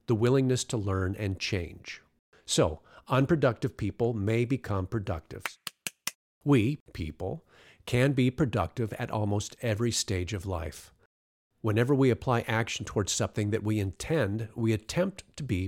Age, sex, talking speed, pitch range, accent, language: 50-69, male, 140 wpm, 100-130 Hz, American, English